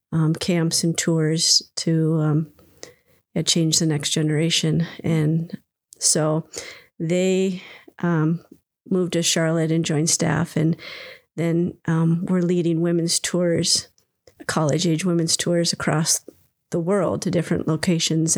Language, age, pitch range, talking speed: English, 40-59, 165-180 Hz, 120 wpm